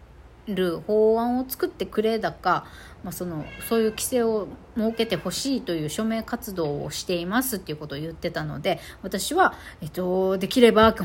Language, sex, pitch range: Japanese, female, 175-240 Hz